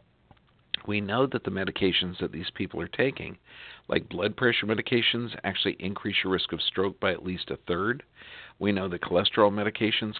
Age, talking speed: 50-69, 175 wpm